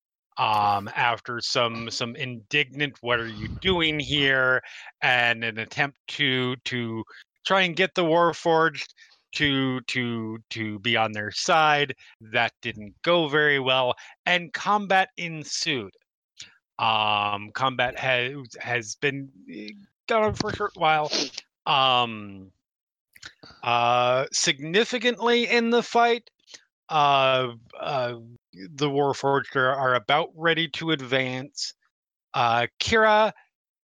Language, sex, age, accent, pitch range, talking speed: English, male, 30-49, American, 120-165 Hz, 110 wpm